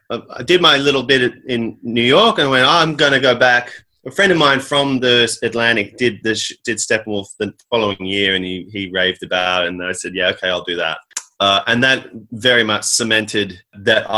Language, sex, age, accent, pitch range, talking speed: English, male, 30-49, Australian, 115-155 Hz, 215 wpm